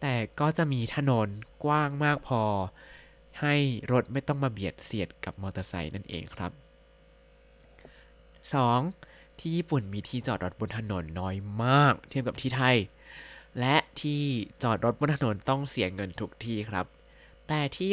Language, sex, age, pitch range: Thai, male, 20-39, 105-150 Hz